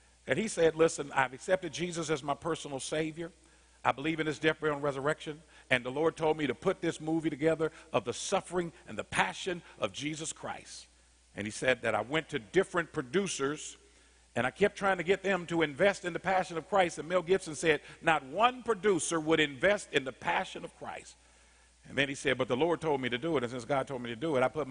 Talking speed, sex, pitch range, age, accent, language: 235 wpm, male, 130-175 Hz, 50-69, American, English